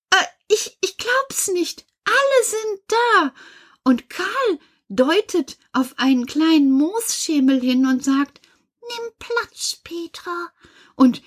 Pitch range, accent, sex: 230-330 Hz, German, female